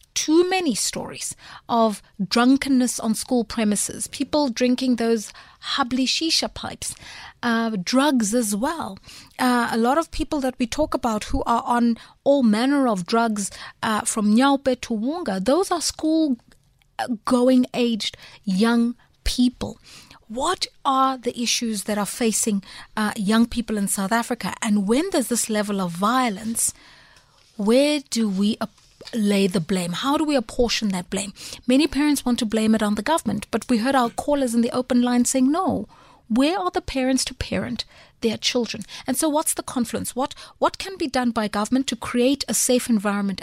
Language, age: English, 30-49